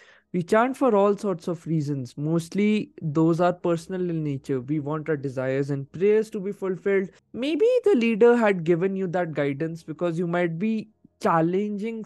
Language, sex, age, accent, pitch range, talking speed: Hindi, male, 20-39, native, 155-200 Hz, 175 wpm